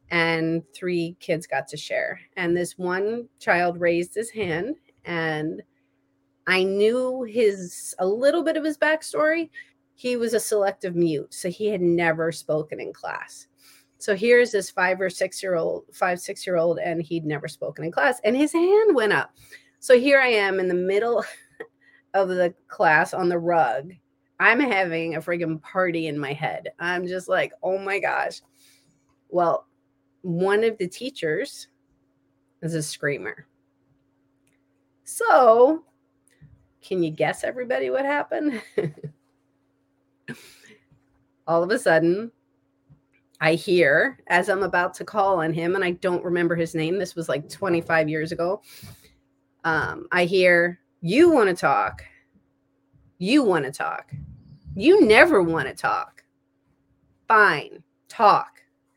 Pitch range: 160-215 Hz